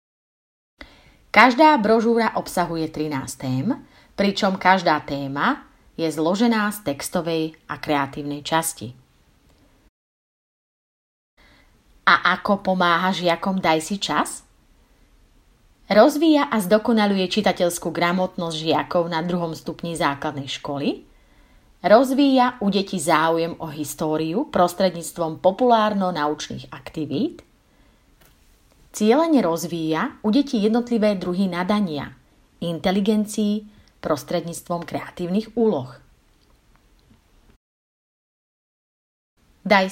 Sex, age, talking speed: female, 30-49, 80 wpm